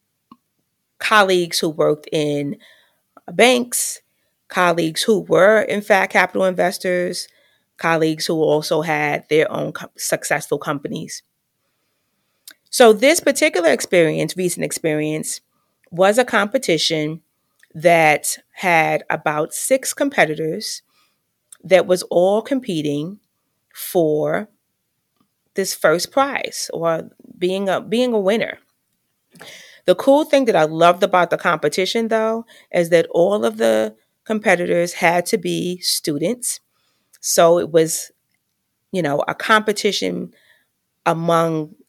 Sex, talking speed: female, 110 wpm